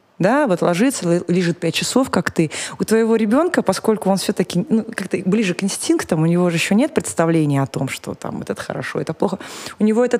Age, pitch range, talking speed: 20-39, 165-220 Hz, 210 wpm